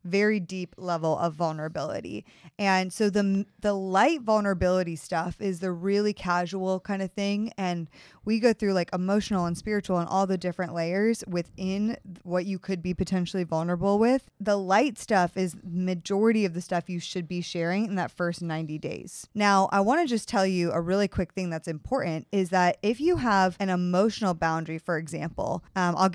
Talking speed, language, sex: 190 wpm, English, female